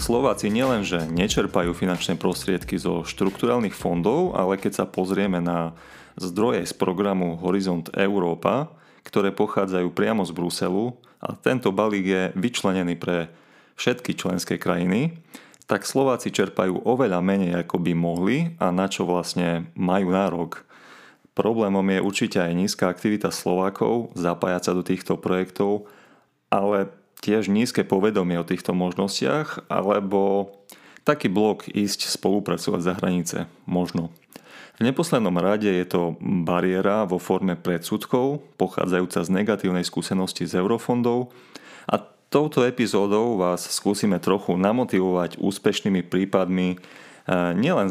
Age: 30-49